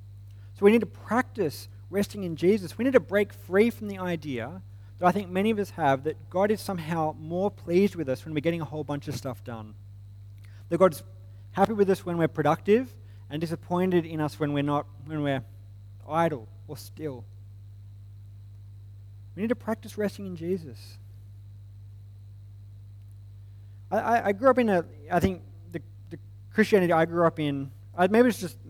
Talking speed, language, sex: 180 wpm, English, male